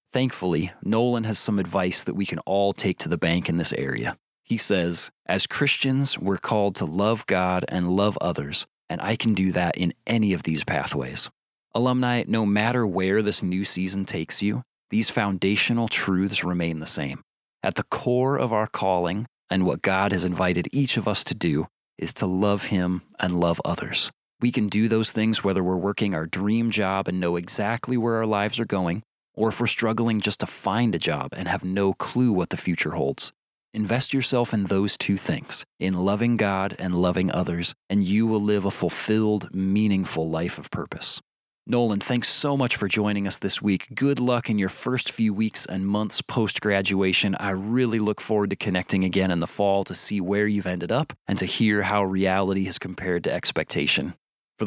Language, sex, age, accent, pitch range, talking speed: English, male, 30-49, American, 95-115 Hz, 195 wpm